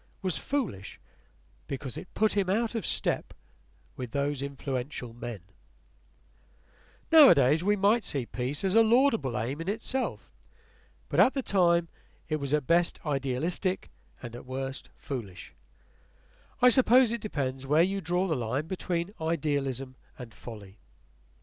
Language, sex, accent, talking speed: English, male, British, 140 wpm